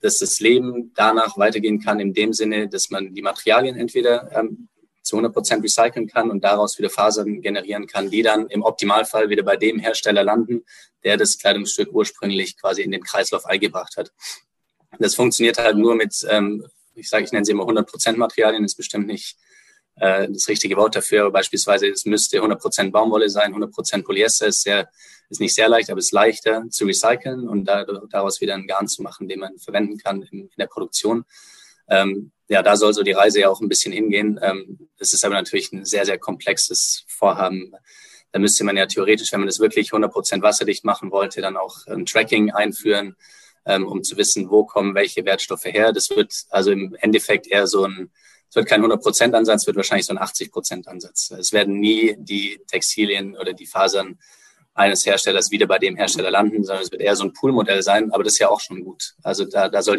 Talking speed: 205 wpm